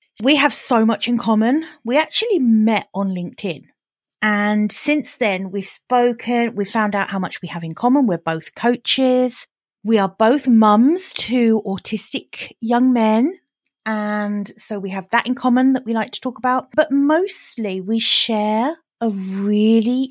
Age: 40-59